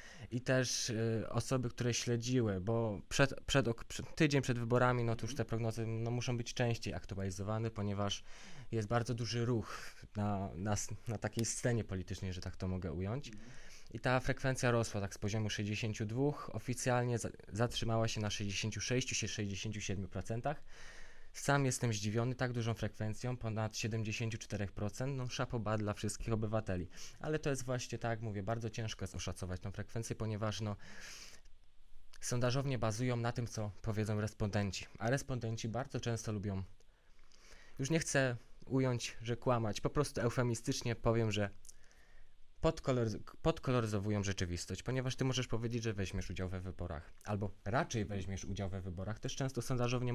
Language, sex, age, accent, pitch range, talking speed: Polish, male, 20-39, native, 100-120 Hz, 150 wpm